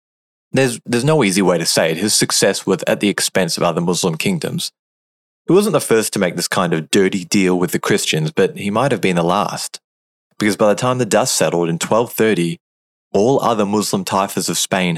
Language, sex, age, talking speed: English, male, 20-39, 215 wpm